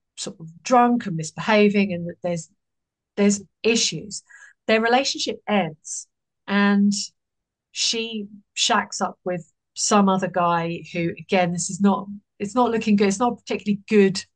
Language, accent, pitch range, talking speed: English, British, 170-210 Hz, 140 wpm